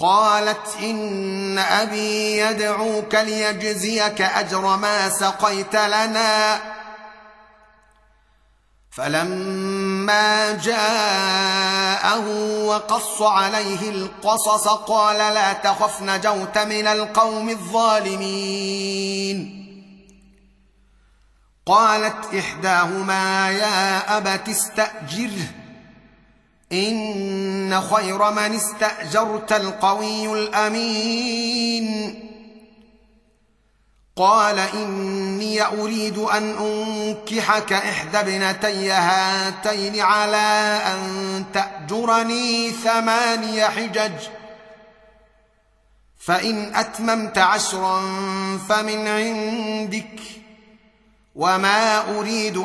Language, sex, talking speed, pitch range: Arabic, male, 60 wpm, 195-215 Hz